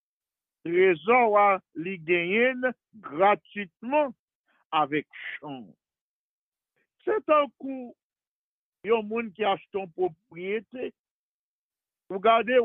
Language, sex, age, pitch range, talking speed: English, male, 50-69, 175-195 Hz, 85 wpm